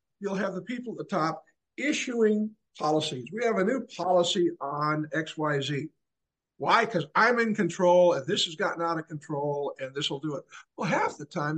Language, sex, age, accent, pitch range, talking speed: English, male, 50-69, American, 150-185 Hz, 200 wpm